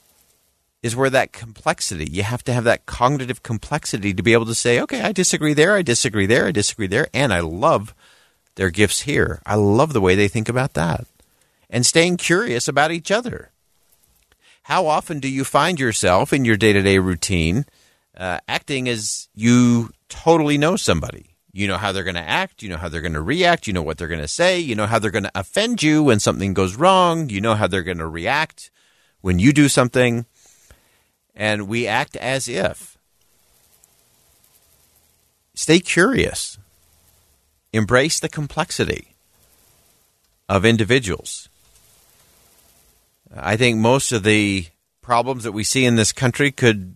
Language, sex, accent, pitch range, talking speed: English, male, American, 100-135 Hz, 170 wpm